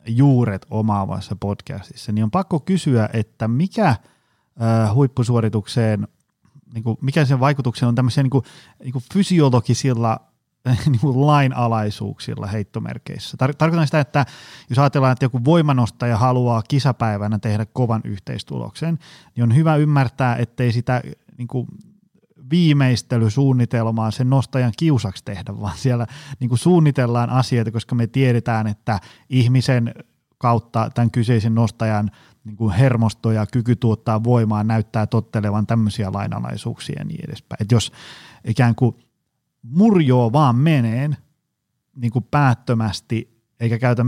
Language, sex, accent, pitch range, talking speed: Finnish, male, native, 110-135 Hz, 115 wpm